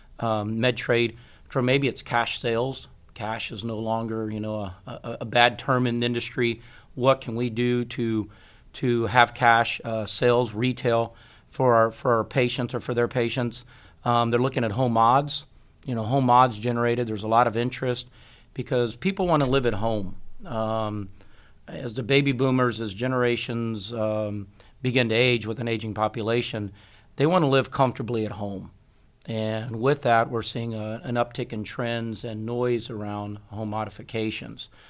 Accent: American